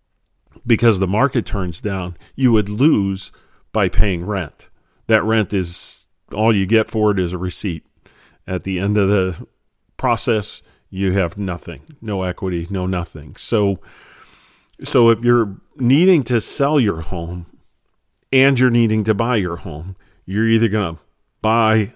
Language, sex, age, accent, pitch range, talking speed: English, male, 40-59, American, 95-115 Hz, 155 wpm